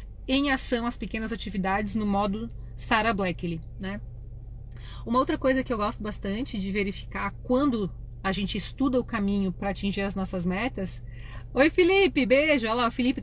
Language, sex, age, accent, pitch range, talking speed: Portuguese, female, 30-49, Brazilian, 195-260 Hz, 170 wpm